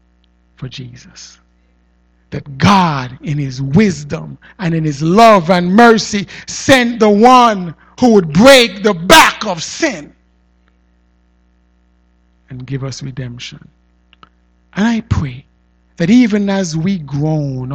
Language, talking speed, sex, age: English, 120 wpm, male, 60-79